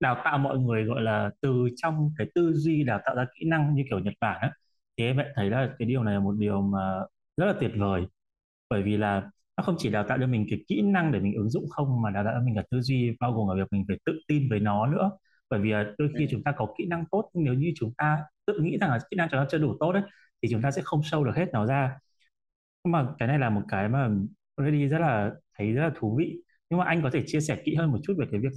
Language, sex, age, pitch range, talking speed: Vietnamese, male, 20-39, 105-155 Hz, 290 wpm